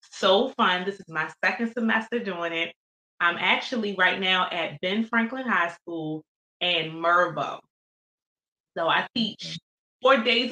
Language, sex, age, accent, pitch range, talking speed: English, female, 20-39, American, 180-245 Hz, 145 wpm